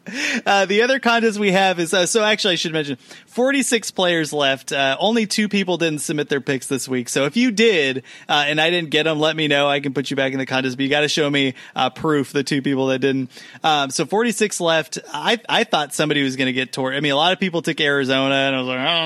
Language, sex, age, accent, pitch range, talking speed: English, male, 30-49, American, 140-190 Hz, 275 wpm